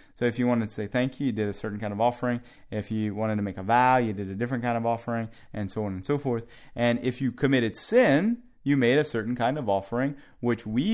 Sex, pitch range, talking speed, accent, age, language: male, 110-130 Hz, 270 wpm, American, 30-49, English